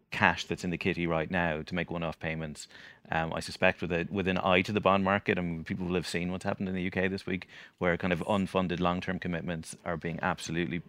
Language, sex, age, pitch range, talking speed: English, male, 30-49, 80-95 Hz, 255 wpm